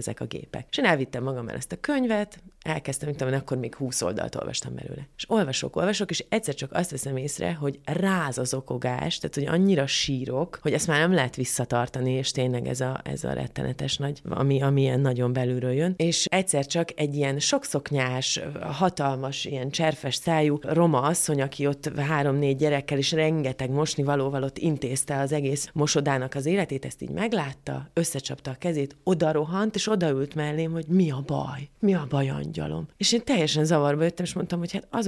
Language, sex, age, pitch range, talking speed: Hungarian, female, 30-49, 135-175 Hz, 190 wpm